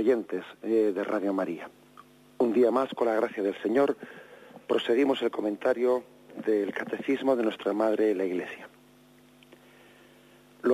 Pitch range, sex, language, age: 110-125 Hz, male, Spanish, 40-59